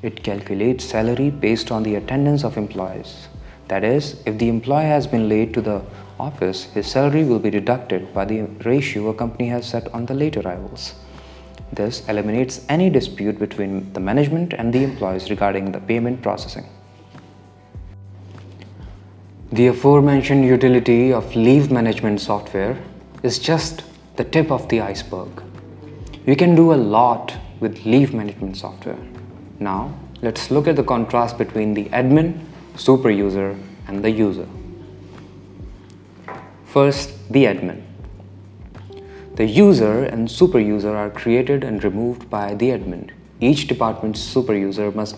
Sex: male